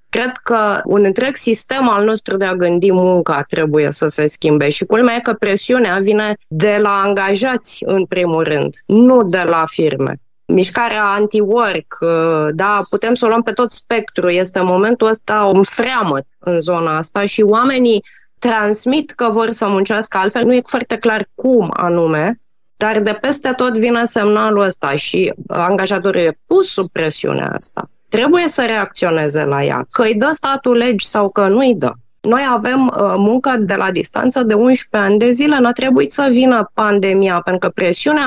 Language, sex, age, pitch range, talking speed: Romanian, female, 20-39, 190-240 Hz, 175 wpm